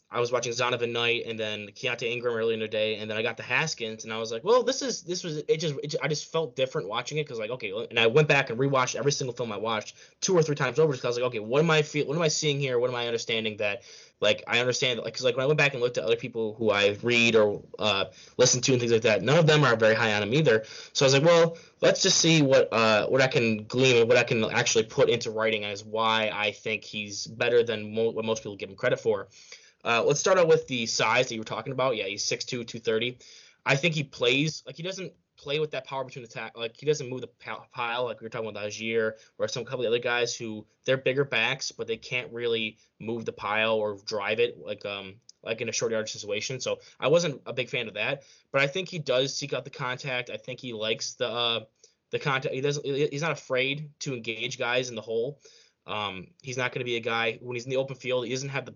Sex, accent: male, American